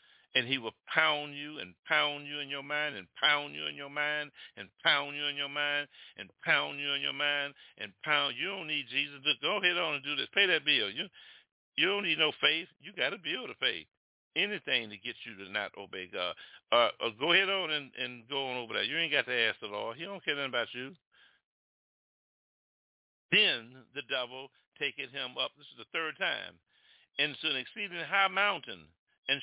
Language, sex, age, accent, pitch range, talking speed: English, male, 60-79, American, 130-170 Hz, 220 wpm